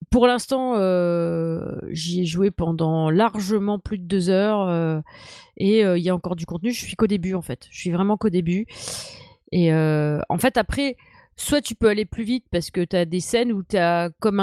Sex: female